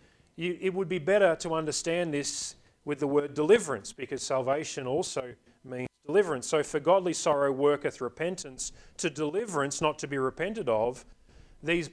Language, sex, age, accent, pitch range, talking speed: English, male, 40-59, Australian, 125-165 Hz, 150 wpm